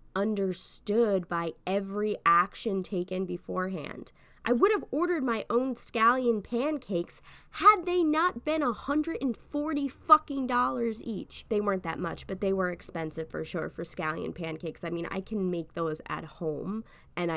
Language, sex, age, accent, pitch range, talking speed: English, female, 20-39, American, 170-245 Hz, 150 wpm